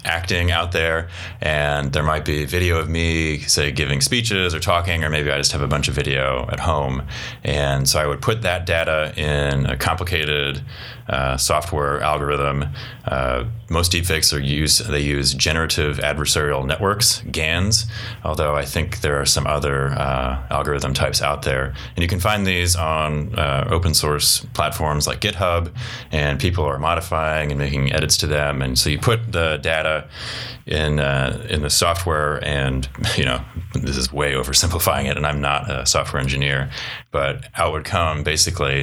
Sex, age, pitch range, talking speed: male, 20-39, 70-85 Hz, 175 wpm